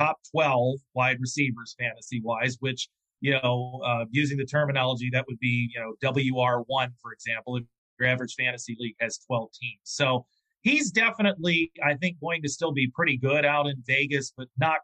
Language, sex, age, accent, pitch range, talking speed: English, male, 40-59, American, 125-155 Hz, 180 wpm